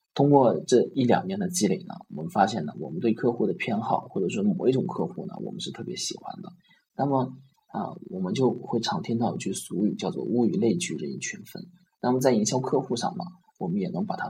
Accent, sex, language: native, male, Chinese